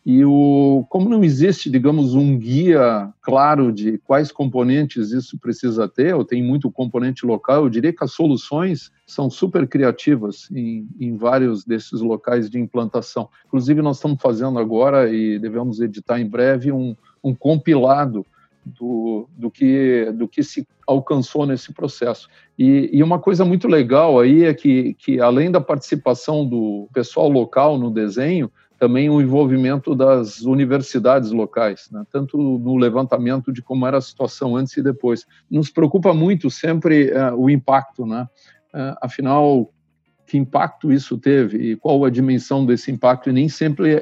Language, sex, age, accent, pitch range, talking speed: Portuguese, male, 50-69, Brazilian, 120-145 Hz, 160 wpm